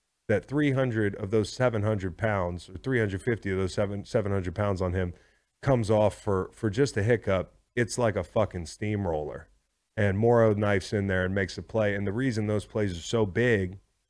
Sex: male